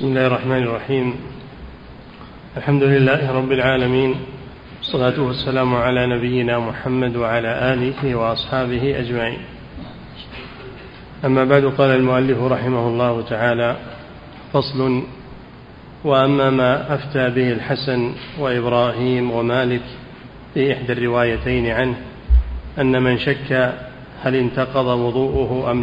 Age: 40-59